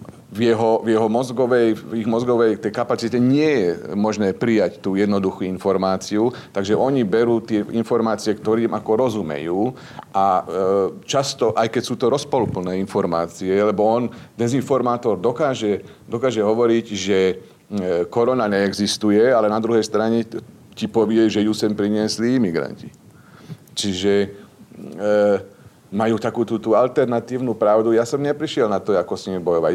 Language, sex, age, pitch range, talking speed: Slovak, male, 40-59, 100-120 Hz, 145 wpm